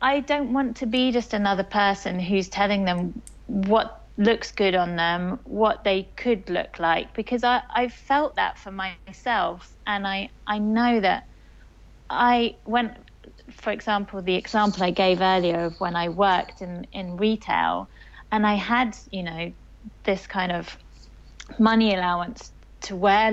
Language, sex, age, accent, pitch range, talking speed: English, female, 30-49, British, 185-235 Hz, 155 wpm